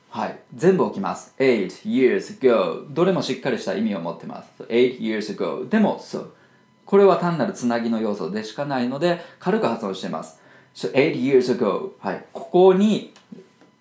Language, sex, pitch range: Japanese, male, 130-190 Hz